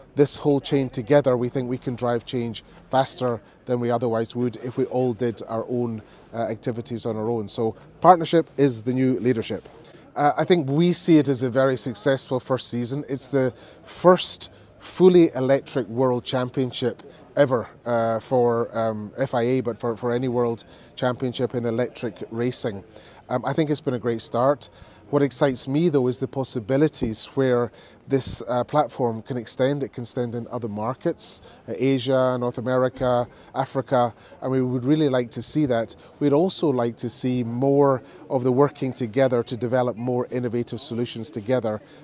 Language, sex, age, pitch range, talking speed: English, male, 30-49, 120-135 Hz, 175 wpm